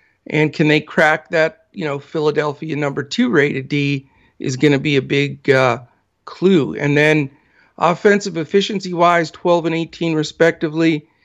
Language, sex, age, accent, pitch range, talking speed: English, male, 50-69, American, 135-170 Hz, 155 wpm